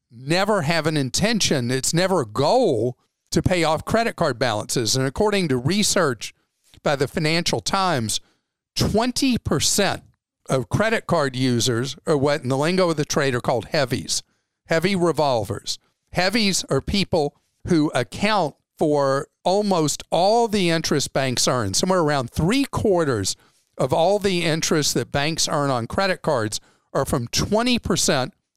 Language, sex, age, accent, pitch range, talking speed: English, male, 50-69, American, 130-185 Hz, 145 wpm